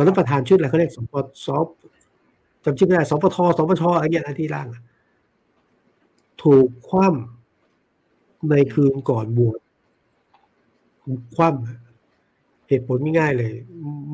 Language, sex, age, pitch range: Thai, male, 60-79, 125-150 Hz